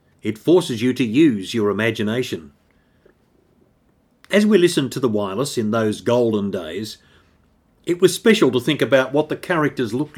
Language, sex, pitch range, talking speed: English, male, 115-145 Hz, 160 wpm